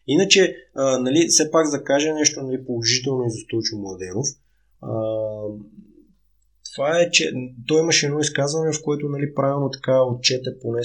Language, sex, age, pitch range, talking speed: Bulgarian, male, 20-39, 110-145 Hz, 155 wpm